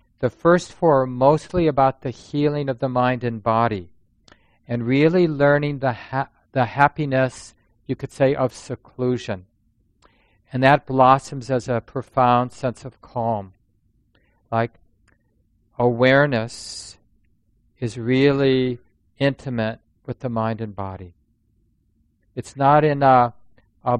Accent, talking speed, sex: American, 125 wpm, male